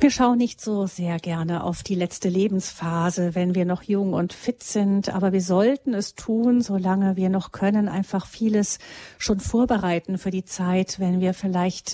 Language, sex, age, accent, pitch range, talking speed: German, female, 40-59, German, 190-215 Hz, 180 wpm